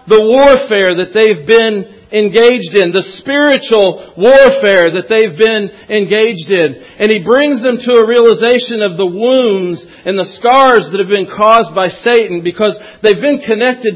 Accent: American